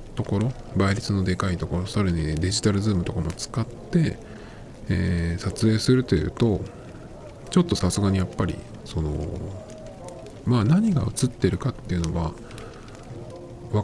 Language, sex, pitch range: Japanese, male, 90-125 Hz